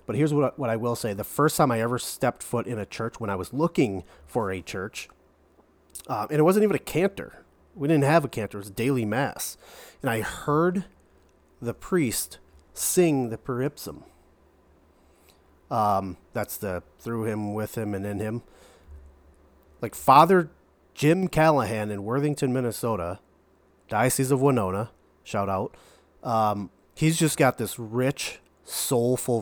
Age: 30-49